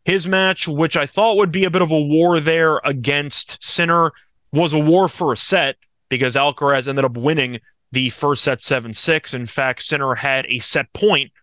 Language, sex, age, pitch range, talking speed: English, male, 20-39, 125-155 Hz, 195 wpm